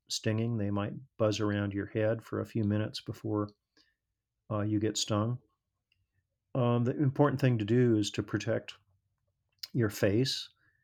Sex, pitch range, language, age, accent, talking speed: male, 105-120 Hz, English, 40-59, American, 150 wpm